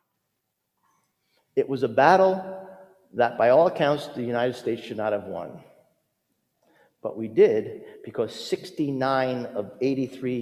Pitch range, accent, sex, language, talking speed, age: 130-195 Hz, American, male, English, 125 wpm, 50-69